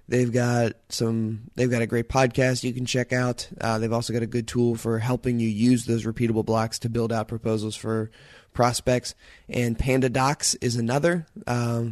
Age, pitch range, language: 20-39, 110-120 Hz, English